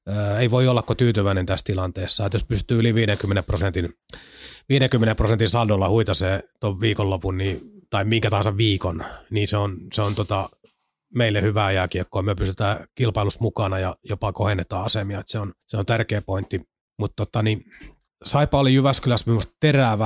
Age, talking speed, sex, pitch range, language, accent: 30-49, 160 wpm, male, 95-120 Hz, Finnish, native